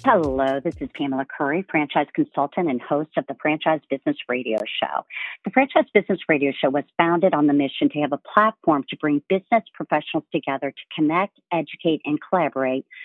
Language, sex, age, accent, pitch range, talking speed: English, female, 50-69, American, 150-200 Hz, 180 wpm